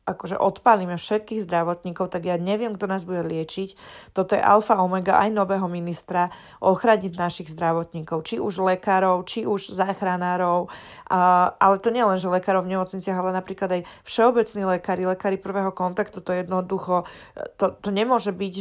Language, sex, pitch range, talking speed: Slovak, female, 180-200 Hz, 160 wpm